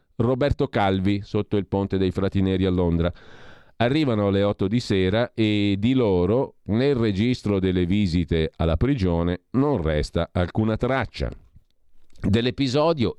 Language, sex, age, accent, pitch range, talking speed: Italian, male, 40-59, native, 85-115 Hz, 125 wpm